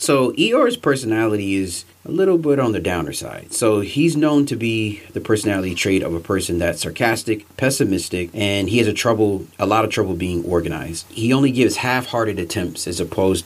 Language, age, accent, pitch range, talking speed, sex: English, 30-49, American, 90-115 Hz, 190 wpm, male